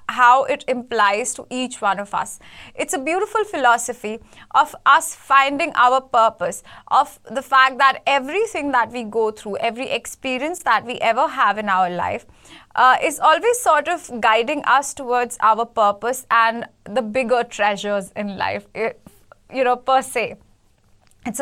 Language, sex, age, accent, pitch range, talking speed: English, female, 20-39, Indian, 235-300 Hz, 155 wpm